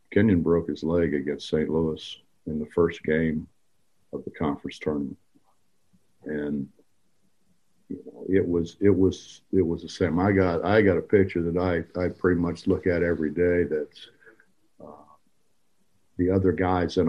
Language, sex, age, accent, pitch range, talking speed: English, male, 50-69, American, 80-95 Hz, 160 wpm